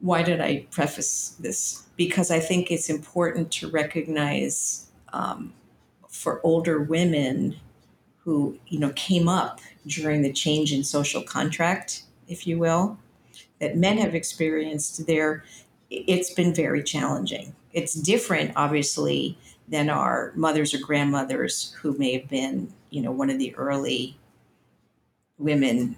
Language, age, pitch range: English, 50-69, 145-170 Hz